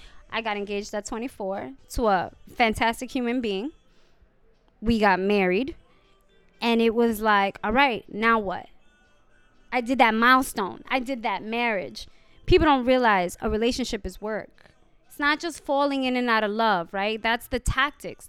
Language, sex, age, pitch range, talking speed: English, female, 20-39, 200-255 Hz, 160 wpm